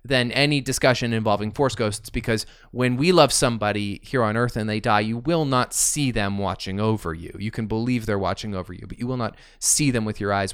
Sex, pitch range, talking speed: male, 100-125 Hz, 235 wpm